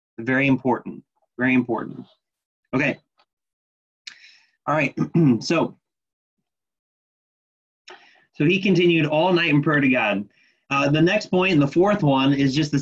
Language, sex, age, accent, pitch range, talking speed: English, male, 30-49, American, 130-175 Hz, 125 wpm